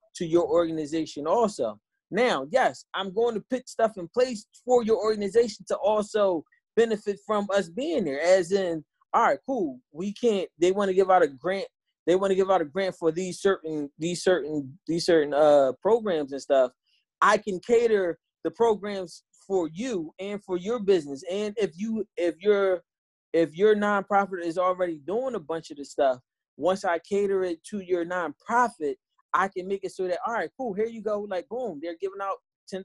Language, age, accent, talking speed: English, 20-39, American, 195 wpm